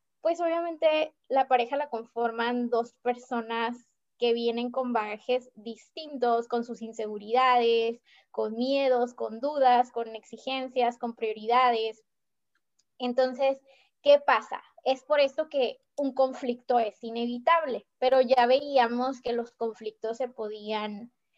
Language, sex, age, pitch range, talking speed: Spanish, female, 20-39, 230-280 Hz, 120 wpm